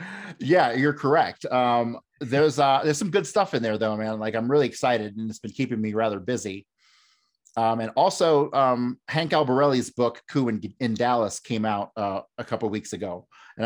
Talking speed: 195 wpm